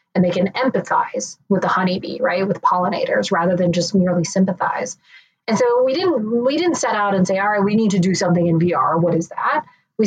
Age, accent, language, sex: 30-49, American, English, female